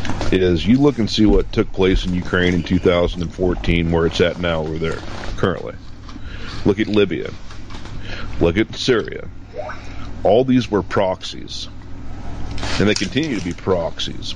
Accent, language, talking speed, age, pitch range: American, English, 145 wpm, 40-59, 90-105 Hz